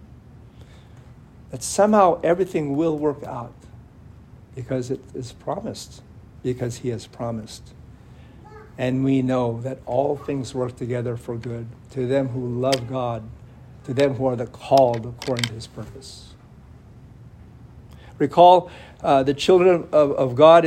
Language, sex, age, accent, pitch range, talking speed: English, male, 60-79, American, 120-140 Hz, 130 wpm